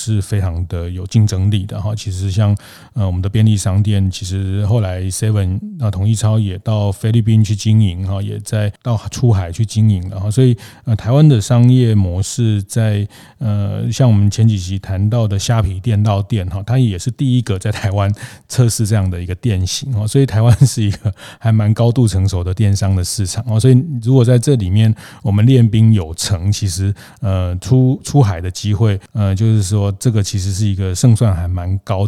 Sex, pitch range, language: male, 100-115 Hz, Chinese